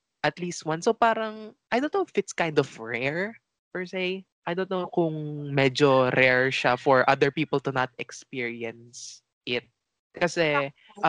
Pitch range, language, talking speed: 130-160 Hz, English, 160 wpm